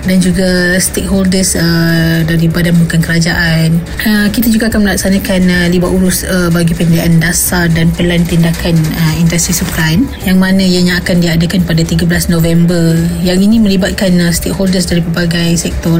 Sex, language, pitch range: female, Malay, 170-190 Hz